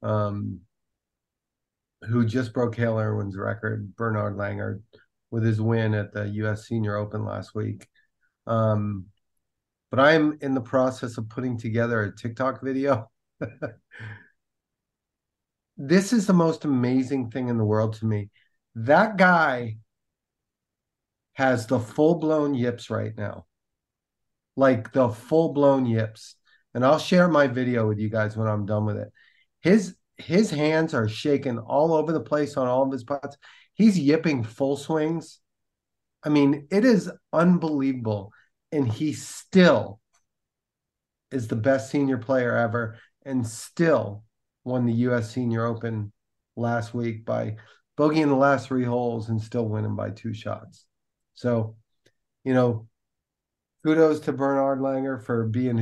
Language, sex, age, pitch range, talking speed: English, male, 30-49, 110-140 Hz, 140 wpm